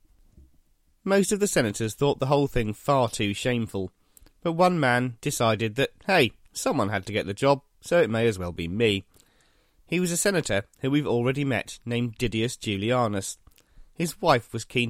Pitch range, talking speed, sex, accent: 105-145 Hz, 180 wpm, male, British